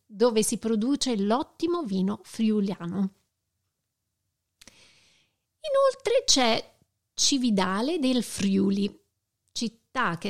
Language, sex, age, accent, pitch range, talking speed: Italian, female, 40-59, native, 195-255 Hz, 75 wpm